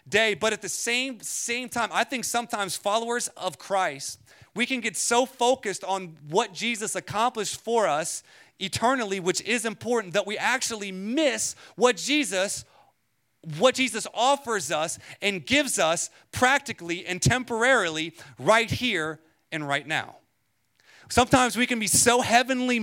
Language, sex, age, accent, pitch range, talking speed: English, male, 30-49, American, 170-235 Hz, 145 wpm